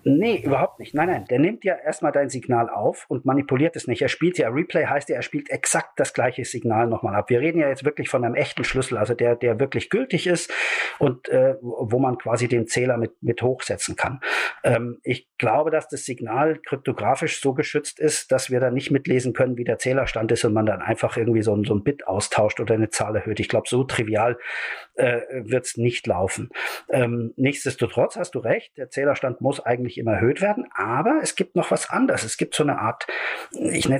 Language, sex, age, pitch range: German, male, 50-69, 120-155 Hz